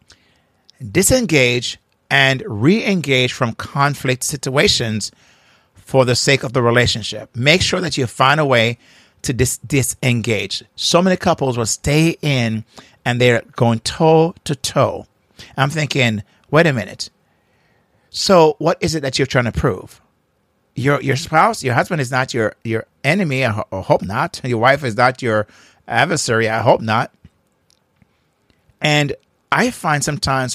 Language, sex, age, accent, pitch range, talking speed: English, male, 50-69, American, 120-150 Hz, 145 wpm